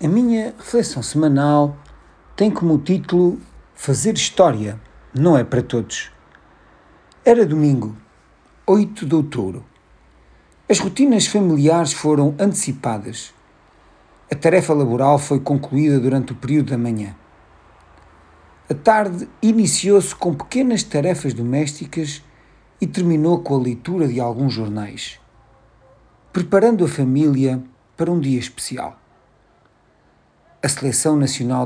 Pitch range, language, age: 120-170 Hz, Portuguese, 50-69